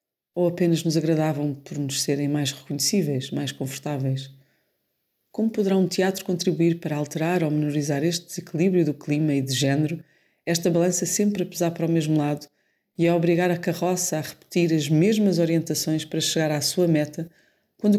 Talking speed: 175 wpm